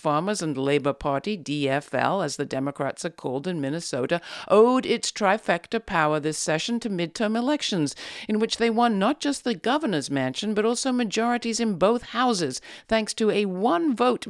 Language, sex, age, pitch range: English, female, 50-69, 155-220 Hz